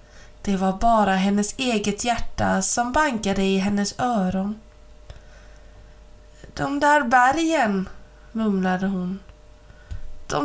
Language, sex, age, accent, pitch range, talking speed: Swedish, female, 20-39, native, 195-260 Hz, 100 wpm